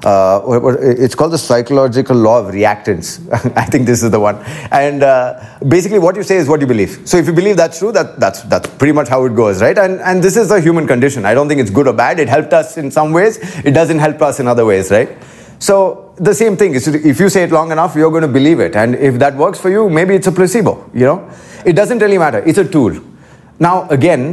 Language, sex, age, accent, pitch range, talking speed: English, male, 30-49, Indian, 125-175 Hz, 255 wpm